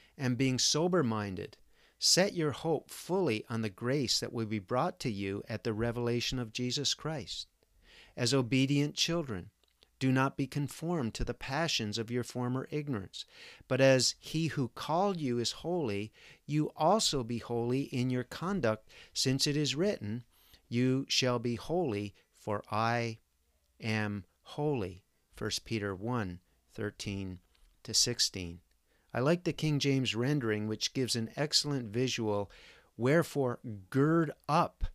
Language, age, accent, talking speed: English, 50-69, American, 140 wpm